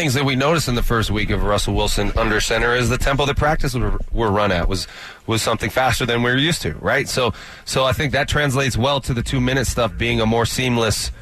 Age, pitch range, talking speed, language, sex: 30-49, 115-145 Hz, 255 wpm, English, male